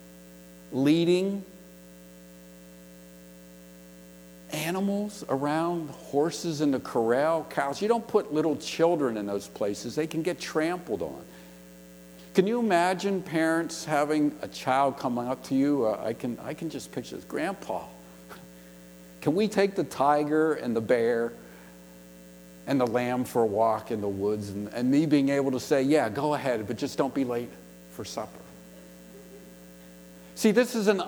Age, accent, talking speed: 50-69, American, 150 wpm